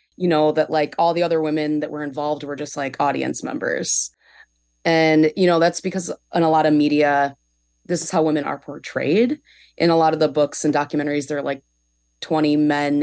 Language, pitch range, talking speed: English, 145-170 Hz, 205 wpm